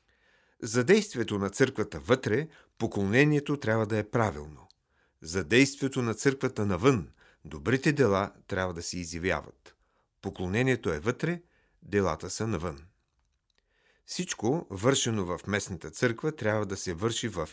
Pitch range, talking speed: 95-130 Hz, 125 wpm